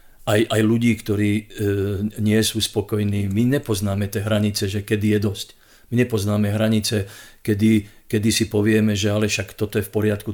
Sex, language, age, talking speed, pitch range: male, Slovak, 50-69, 175 wpm, 105-115 Hz